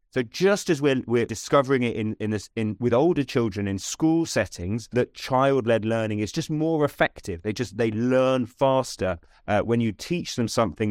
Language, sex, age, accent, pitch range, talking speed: English, male, 30-49, British, 115-155 Hz, 200 wpm